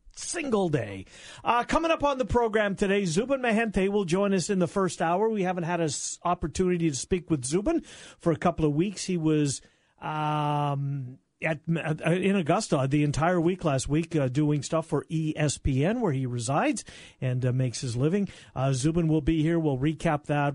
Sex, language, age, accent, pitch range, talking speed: male, English, 50-69, American, 145-190 Hz, 195 wpm